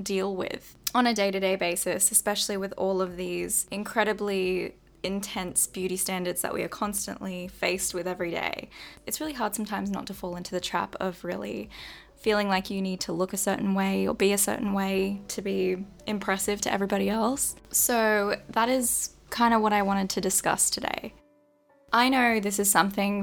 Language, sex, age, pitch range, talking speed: English, female, 10-29, 185-215 Hz, 185 wpm